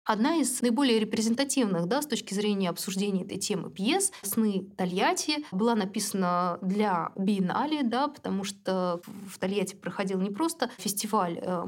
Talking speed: 140 wpm